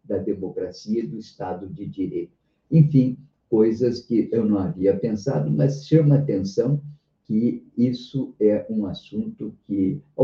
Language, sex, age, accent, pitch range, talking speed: Portuguese, male, 50-69, Brazilian, 115-155 Hz, 140 wpm